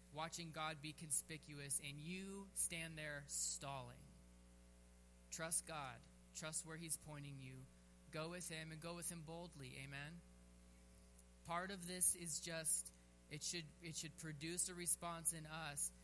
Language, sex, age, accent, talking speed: English, male, 20-39, American, 145 wpm